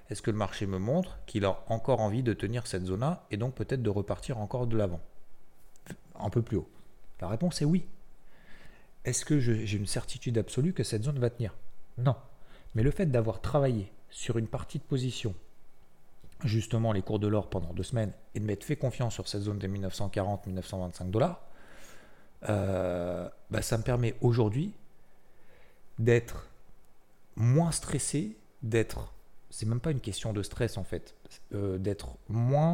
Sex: male